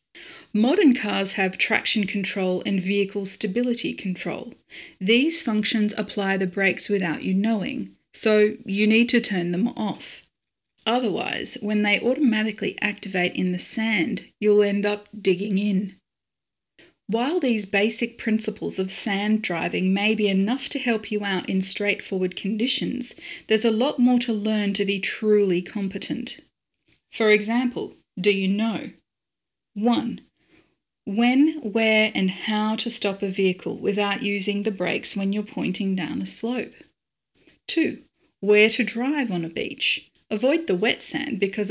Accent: Australian